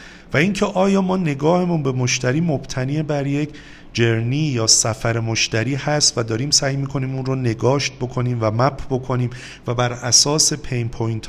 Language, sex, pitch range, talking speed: Persian, male, 115-145 Hz, 170 wpm